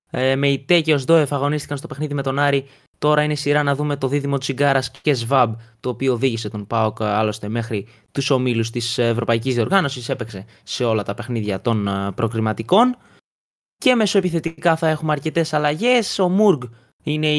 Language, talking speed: Greek, 175 wpm